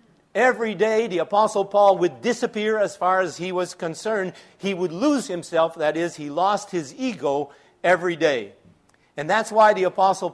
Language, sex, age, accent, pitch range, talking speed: English, male, 50-69, American, 160-220 Hz, 175 wpm